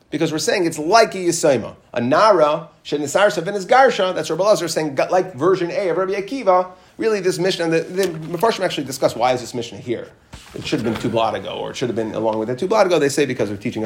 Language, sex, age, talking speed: English, male, 30-49, 245 wpm